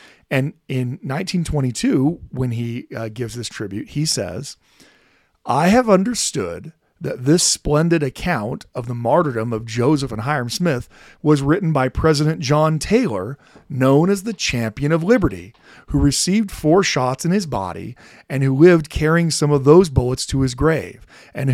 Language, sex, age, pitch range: English, male, 40-59, 125-180 Hz